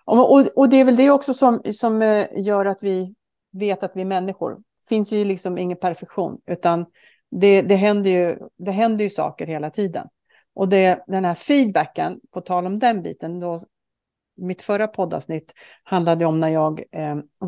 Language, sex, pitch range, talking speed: Swedish, female, 180-275 Hz, 170 wpm